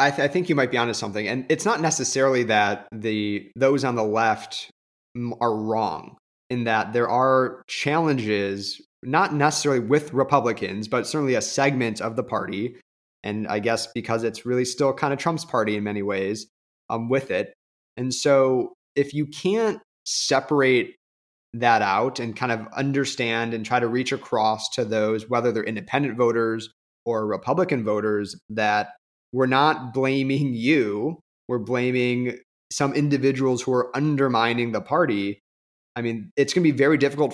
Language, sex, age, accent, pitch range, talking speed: English, male, 30-49, American, 110-140 Hz, 165 wpm